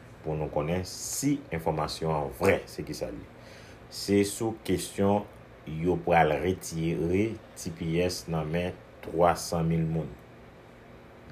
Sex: male